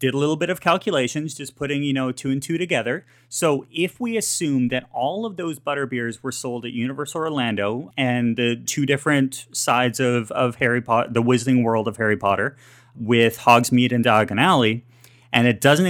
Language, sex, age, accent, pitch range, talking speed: English, male, 30-49, American, 115-140 Hz, 195 wpm